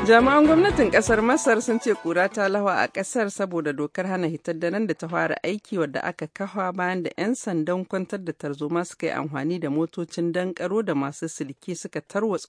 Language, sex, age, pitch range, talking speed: English, female, 50-69, 155-190 Hz, 185 wpm